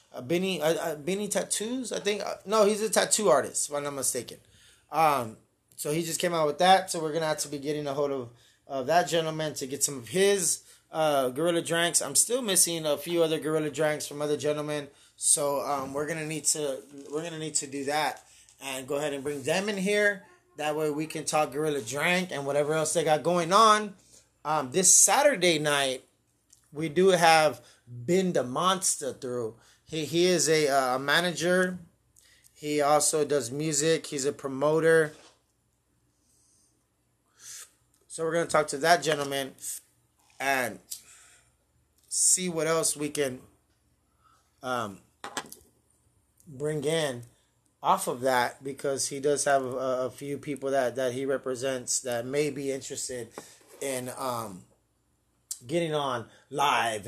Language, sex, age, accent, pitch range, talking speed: English, male, 20-39, American, 135-165 Hz, 160 wpm